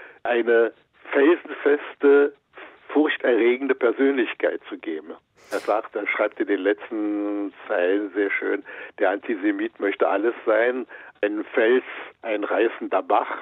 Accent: German